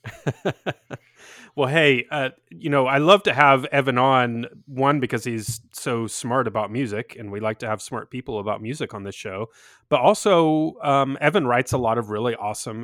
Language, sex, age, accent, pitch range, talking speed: English, male, 30-49, American, 110-140 Hz, 185 wpm